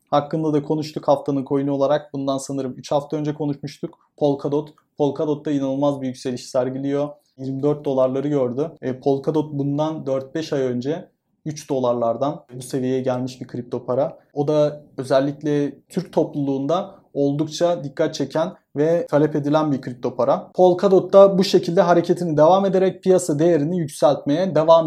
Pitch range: 140-170 Hz